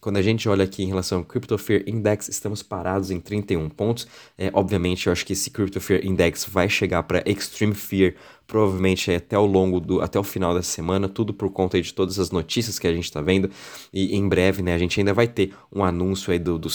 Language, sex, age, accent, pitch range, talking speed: Portuguese, male, 20-39, Brazilian, 90-100 Hz, 245 wpm